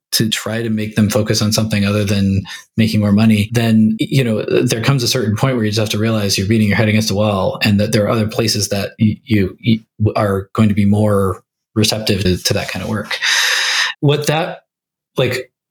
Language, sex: English, male